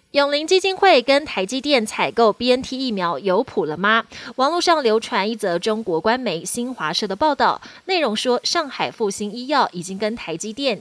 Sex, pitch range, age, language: female, 200-275 Hz, 20-39, Chinese